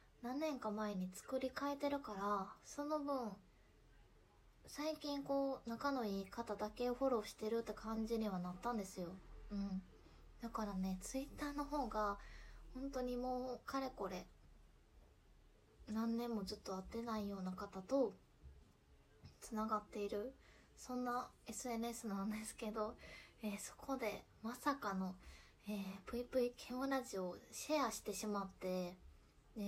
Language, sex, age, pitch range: Japanese, female, 20-39, 200-260 Hz